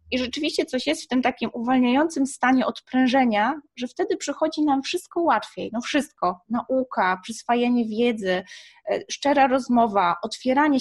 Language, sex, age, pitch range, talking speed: Polish, female, 20-39, 225-280 Hz, 135 wpm